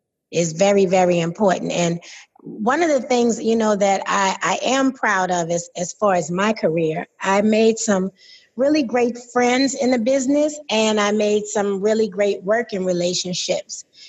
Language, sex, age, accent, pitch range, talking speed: English, female, 30-49, American, 190-235 Hz, 170 wpm